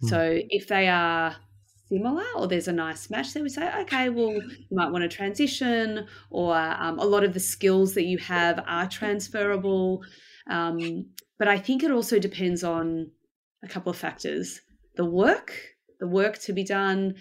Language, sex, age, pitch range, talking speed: English, female, 30-49, 170-215 Hz, 180 wpm